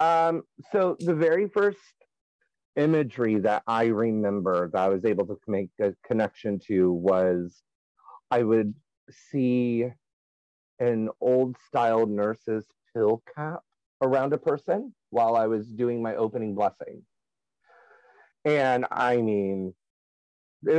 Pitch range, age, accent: 105-165 Hz, 30-49, American